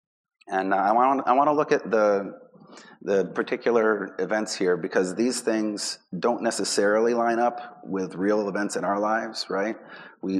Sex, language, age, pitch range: male, English, 30-49, 95-110 Hz